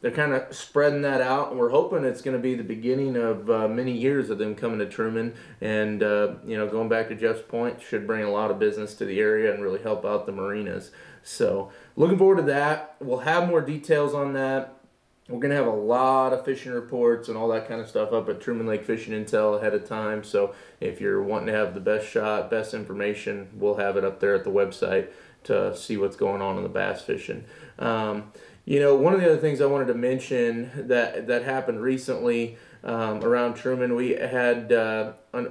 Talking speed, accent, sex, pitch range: 225 wpm, American, male, 110-140 Hz